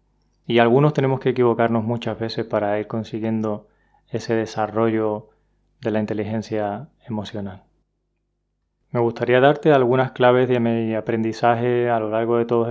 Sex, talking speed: male, 135 wpm